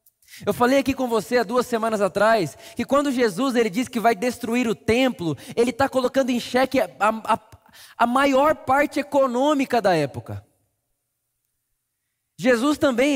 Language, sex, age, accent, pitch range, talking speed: Portuguese, male, 20-39, Brazilian, 185-255 Hz, 150 wpm